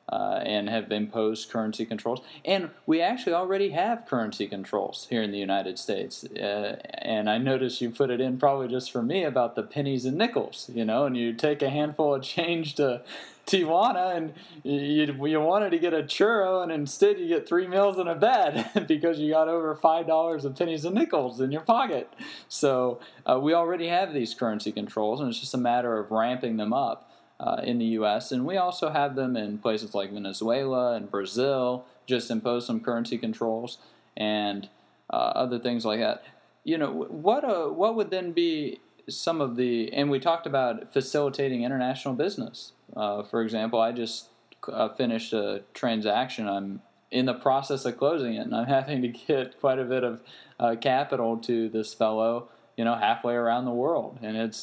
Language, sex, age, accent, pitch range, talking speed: English, male, 20-39, American, 115-155 Hz, 190 wpm